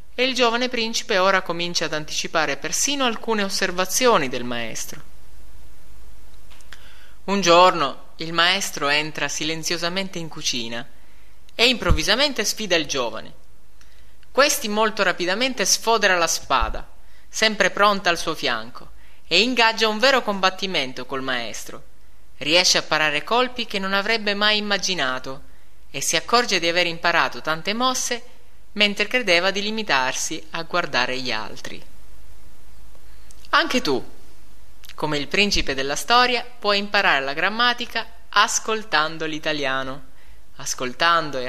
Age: 20-39